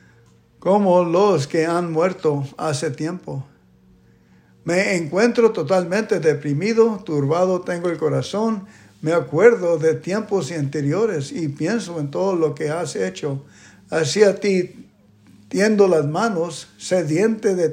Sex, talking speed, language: male, 120 wpm, English